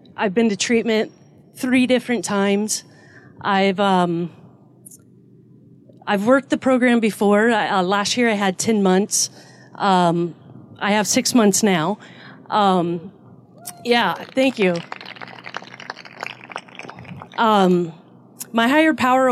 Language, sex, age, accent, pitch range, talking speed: English, female, 40-59, American, 180-225 Hz, 110 wpm